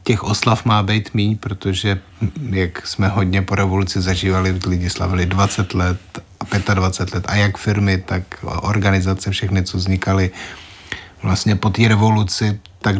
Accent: native